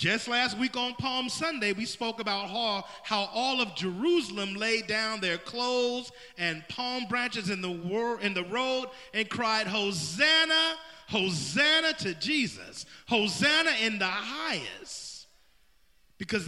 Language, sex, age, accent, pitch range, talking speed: English, male, 40-59, American, 165-250 Hz, 130 wpm